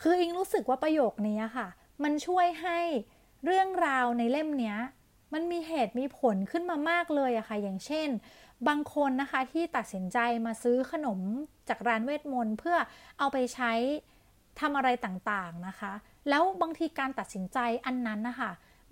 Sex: female